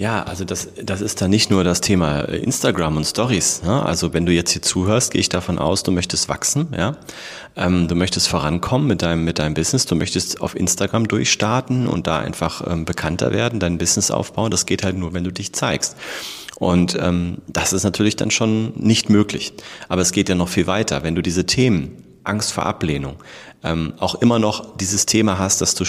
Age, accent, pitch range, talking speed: 30-49, German, 90-110 Hz, 210 wpm